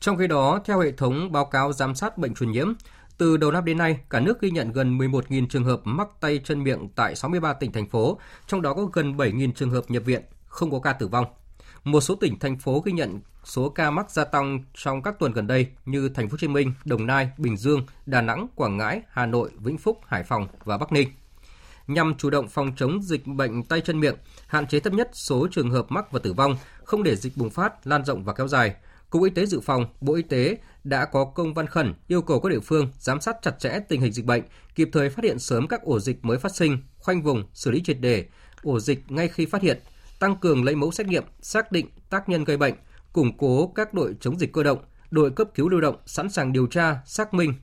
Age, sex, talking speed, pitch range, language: 20-39, male, 250 wpm, 125-165 Hz, Vietnamese